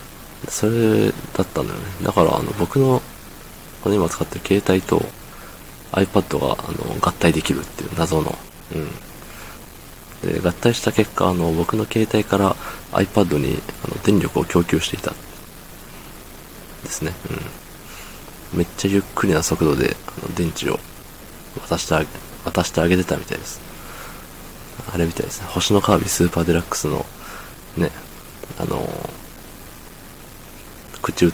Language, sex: Japanese, male